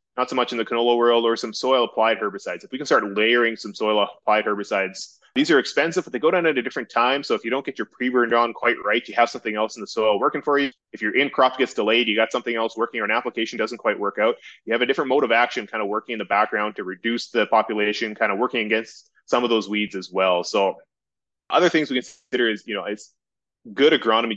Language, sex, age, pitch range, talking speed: English, male, 20-39, 105-120 Hz, 265 wpm